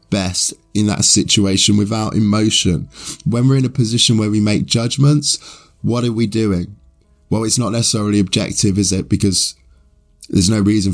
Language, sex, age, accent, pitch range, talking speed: English, male, 20-39, British, 90-110 Hz, 165 wpm